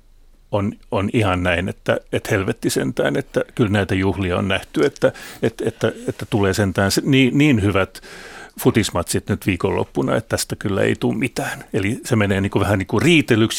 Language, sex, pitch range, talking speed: Finnish, male, 95-115 Hz, 170 wpm